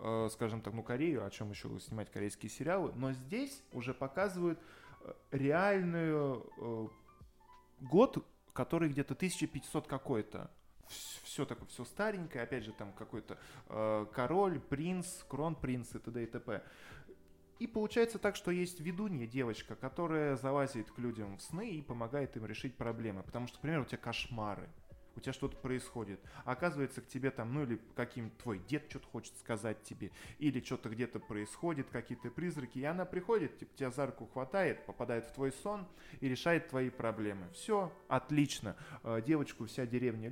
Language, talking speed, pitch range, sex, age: Russian, 160 wpm, 115-155 Hz, male, 20-39